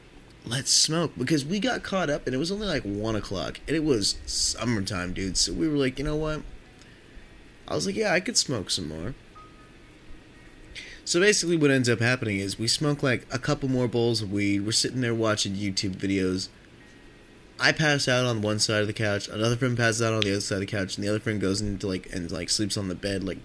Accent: American